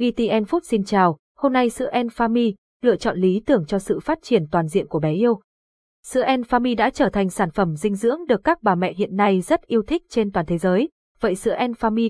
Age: 20-39